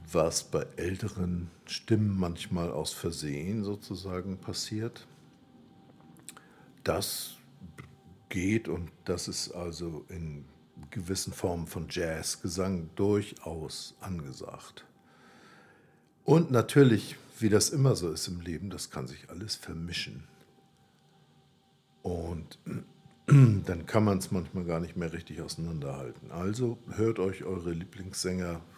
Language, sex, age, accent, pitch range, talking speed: German, male, 60-79, German, 80-100 Hz, 110 wpm